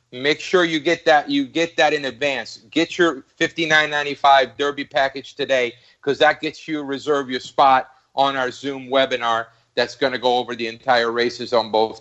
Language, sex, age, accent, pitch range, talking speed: English, male, 40-59, American, 120-155 Hz, 185 wpm